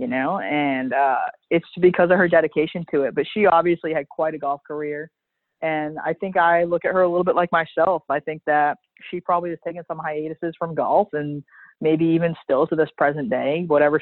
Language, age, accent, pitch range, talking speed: English, 30-49, American, 145-170 Hz, 220 wpm